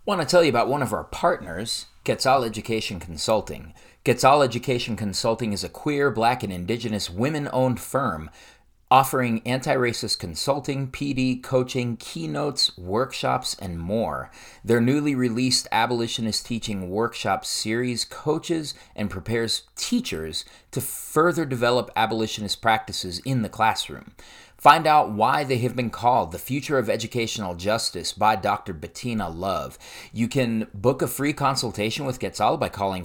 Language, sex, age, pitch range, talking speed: English, male, 30-49, 100-130 Hz, 140 wpm